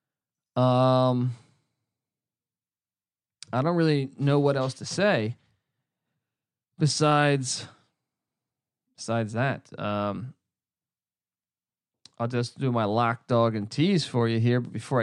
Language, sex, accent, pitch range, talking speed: English, male, American, 115-150 Hz, 105 wpm